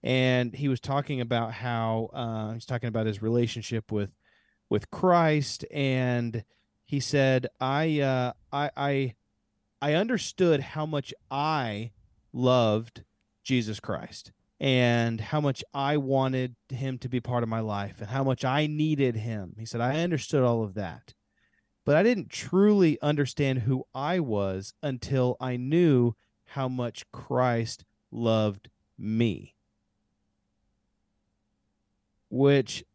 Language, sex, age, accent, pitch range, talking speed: English, male, 30-49, American, 105-140 Hz, 135 wpm